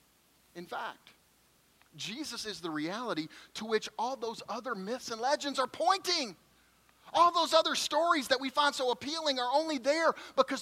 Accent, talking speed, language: American, 165 wpm, English